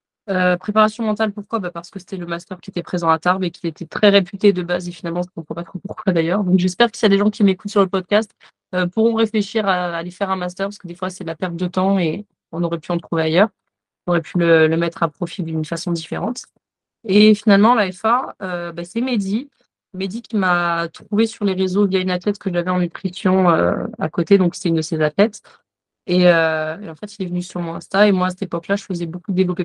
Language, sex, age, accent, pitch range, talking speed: French, female, 20-39, French, 170-200 Hz, 265 wpm